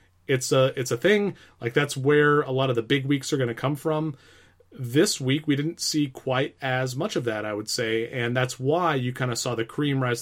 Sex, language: male, English